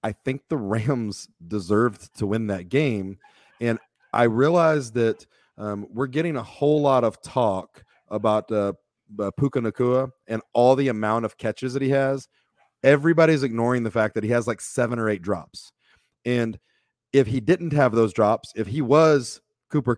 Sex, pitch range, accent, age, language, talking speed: male, 110-135 Hz, American, 30-49, English, 170 wpm